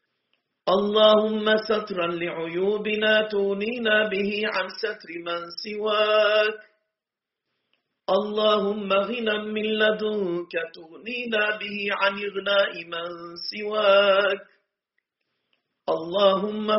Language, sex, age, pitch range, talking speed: Turkish, male, 40-59, 170-210 Hz, 70 wpm